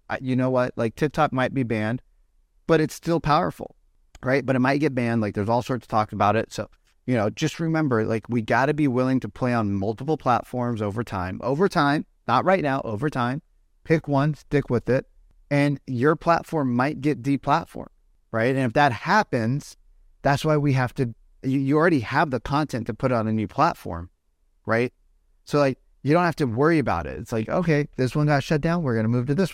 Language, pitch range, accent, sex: English, 105-145 Hz, American, male